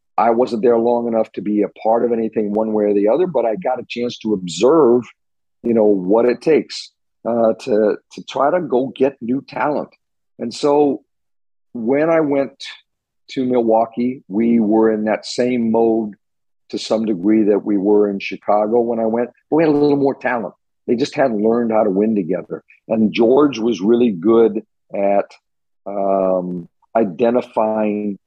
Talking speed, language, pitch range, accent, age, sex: 175 wpm, English, 105-125 Hz, American, 50-69, male